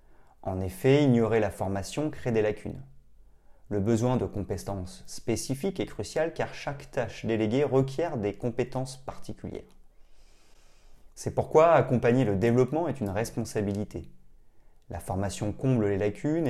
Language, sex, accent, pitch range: French, male, French, 95-130 Hz